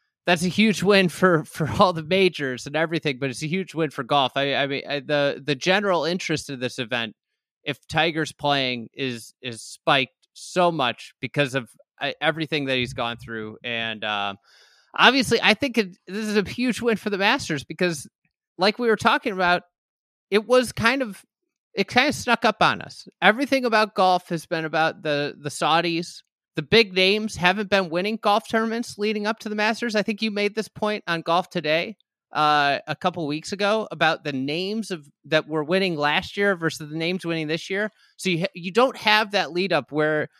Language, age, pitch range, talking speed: English, 30-49, 155-215 Hz, 200 wpm